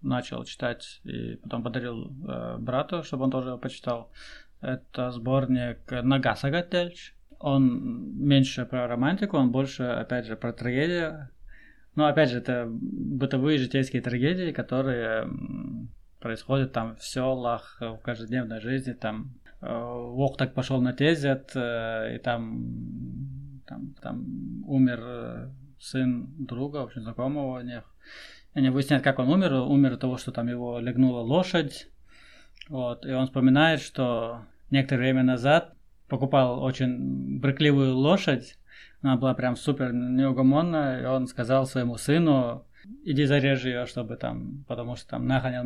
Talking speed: 140 wpm